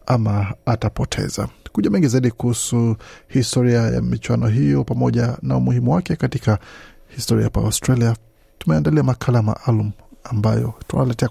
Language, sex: Swahili, male